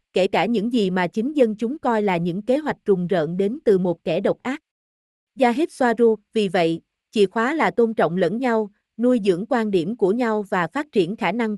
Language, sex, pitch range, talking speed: Vietnamese, female, 185-250 Hz, 225 wpm